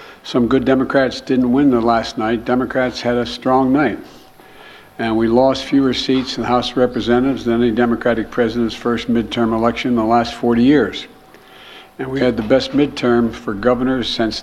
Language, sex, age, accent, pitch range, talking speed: English, male, 60-79, American, 115-135 Hz, 185 wpm